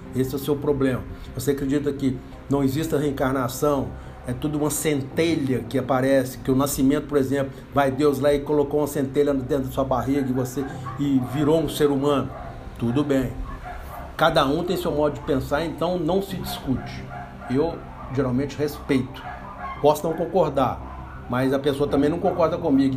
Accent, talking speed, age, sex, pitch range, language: Brazilian, 170 wpm, 60-79, male, 130-165 Hz, Portuguese